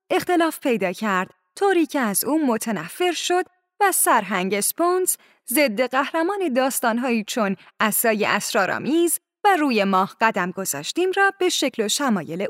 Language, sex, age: Persian, female, 10-29